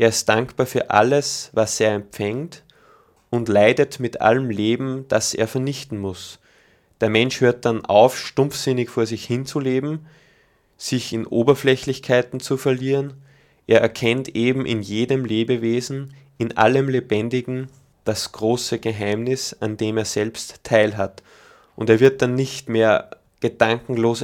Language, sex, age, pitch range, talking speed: German, male, 20-39, 110-130 Hz, 135 wpm